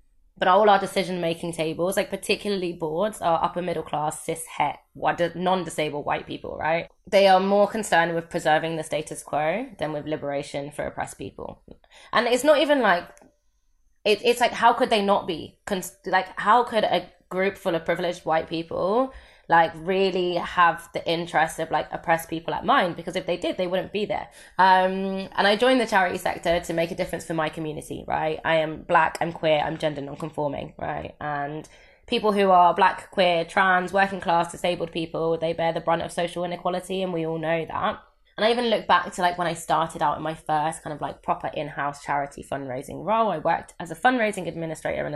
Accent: British